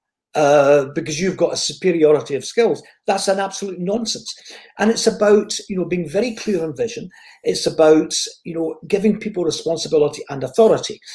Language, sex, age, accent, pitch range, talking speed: English, male, 50-69, British, 160-225 Hz, 165 wpm